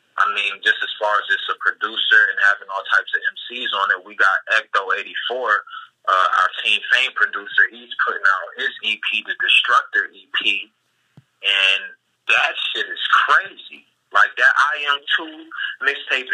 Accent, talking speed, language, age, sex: American, 155 wpm, English, 30-49, male